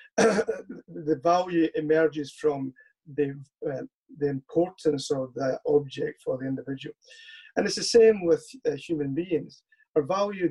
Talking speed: 135 wpm